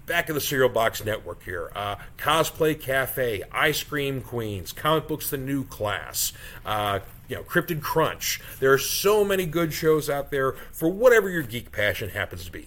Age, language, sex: 40-59, English, male